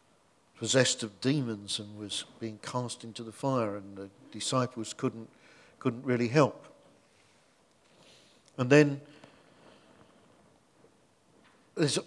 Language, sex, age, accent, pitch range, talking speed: English, male, 50-69, British, 115-140 Hz, 100 wpm